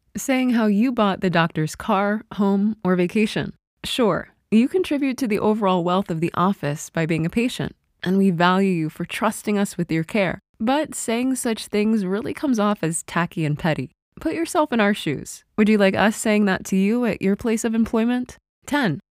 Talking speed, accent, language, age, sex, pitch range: 200 wpm, American, English, 20-39, female, 180-230 Hz